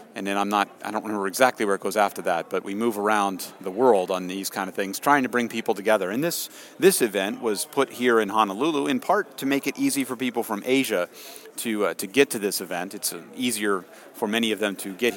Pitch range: 100-120 Hz